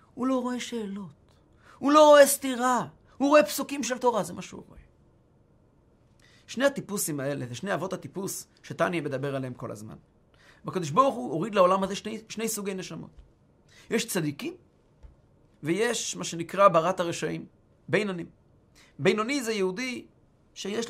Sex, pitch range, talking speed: male, 190-265 Hz, 145 wpm